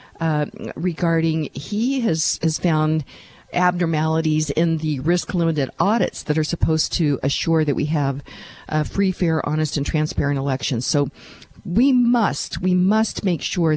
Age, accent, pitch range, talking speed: 50-69, American, 145-180 Hz, 145 wpm